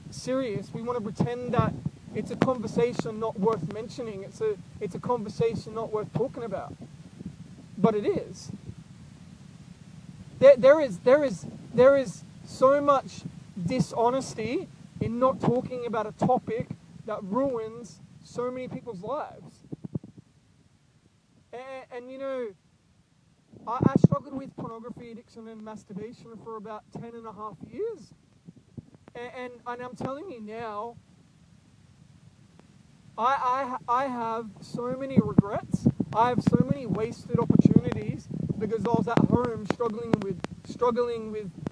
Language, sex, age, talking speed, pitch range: English, male, 20-39, 135 wpm, 210-245 Hz